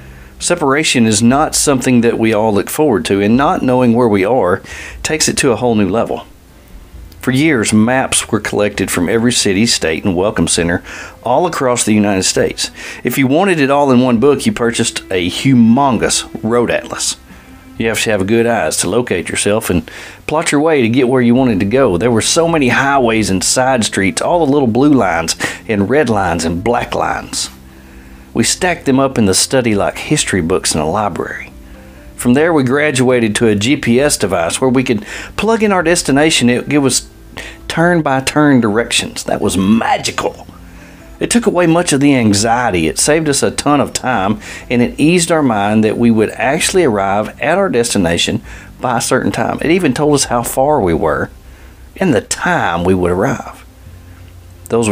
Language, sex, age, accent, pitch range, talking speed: English, male, 40-59, American, 90-130 Hz, 190 wpm